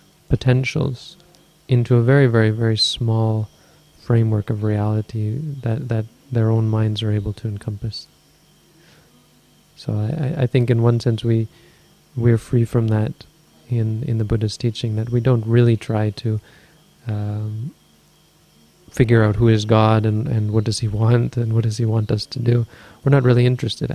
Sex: male